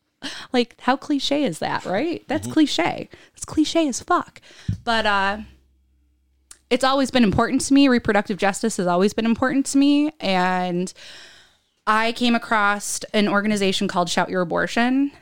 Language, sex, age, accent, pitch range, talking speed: English, female, 20-39, American, 195-265 Hz, 150 wpm